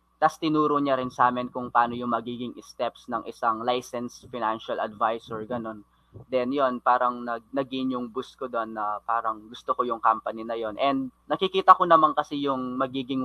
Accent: native